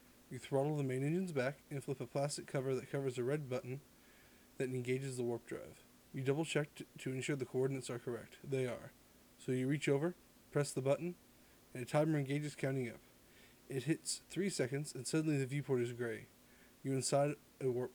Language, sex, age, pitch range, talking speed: English, male, 20-39, 125-145 Hz, 195 wpm